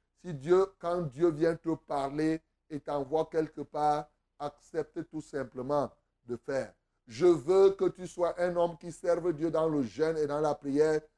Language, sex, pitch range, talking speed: French, male, 155-185 Hz, 175 wpm